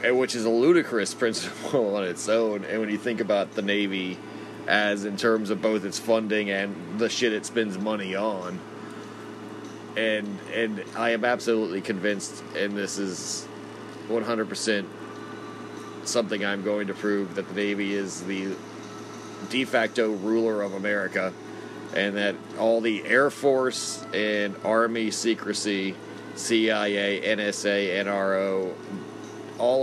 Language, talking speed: English, 135 wpm